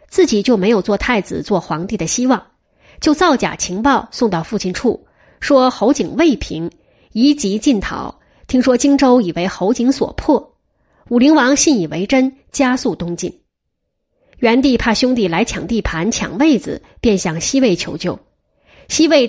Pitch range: 190-265 Hz